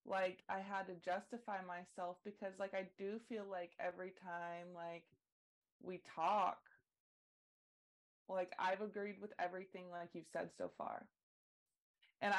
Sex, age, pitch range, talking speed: female, 20-39, 165-190 Hz, 135 wpm